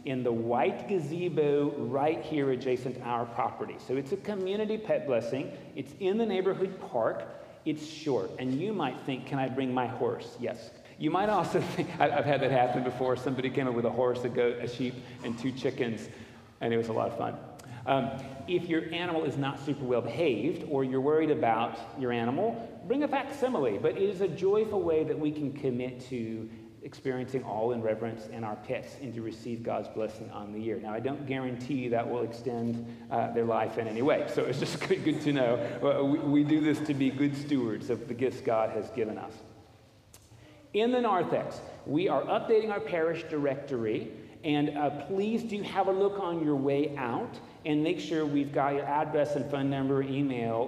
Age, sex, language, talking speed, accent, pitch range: 40-59, male, English, 205 wpm, American, 120-155 Hz